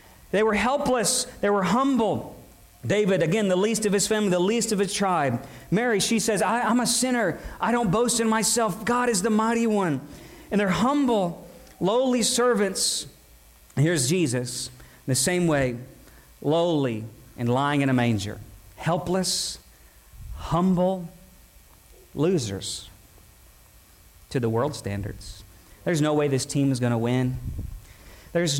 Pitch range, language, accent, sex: 150-215 Hz, English, American, male